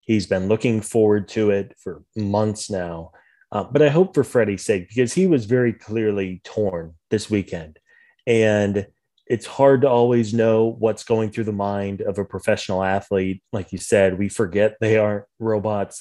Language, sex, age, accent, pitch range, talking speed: English, male, 30-49, American, 100-115 Hz, 175 wpm